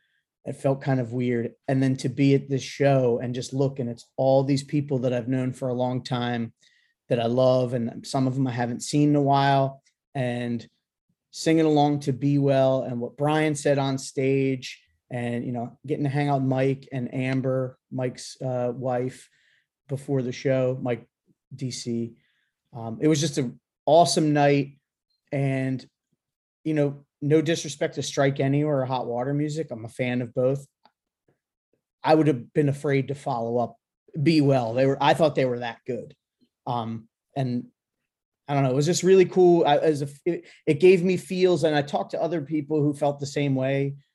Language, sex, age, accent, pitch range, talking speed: English, male, 30-49, American, 125-145 Hz, 185 wpm